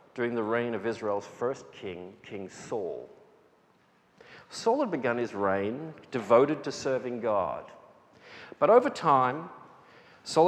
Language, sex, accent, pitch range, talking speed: English, male, Australian, 115-150 Hz, 125 wpm